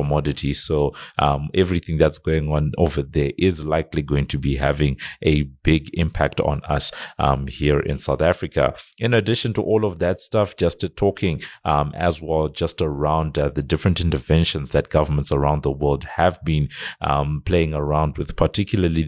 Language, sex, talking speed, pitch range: English, male, 175 wpm, 70-80 Hz